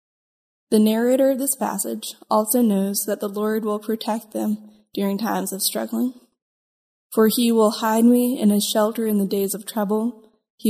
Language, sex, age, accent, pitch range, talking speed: English, female, 10-29, American, 205-225 Hz, 175 wpm